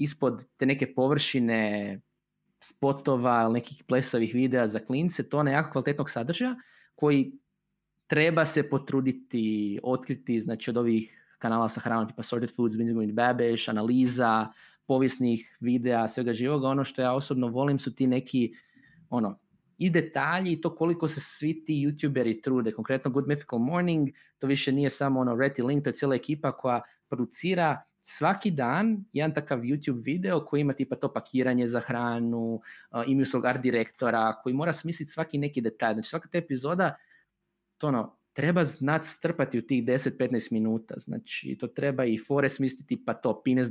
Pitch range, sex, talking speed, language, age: 120-150 Hz, male, 160 wpm, Croatian, 20-39